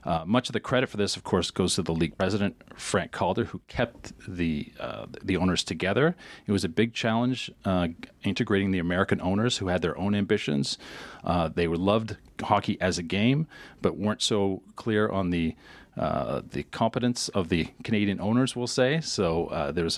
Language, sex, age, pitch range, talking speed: English, male, 40-59, 85-105 Hz, 190 wpm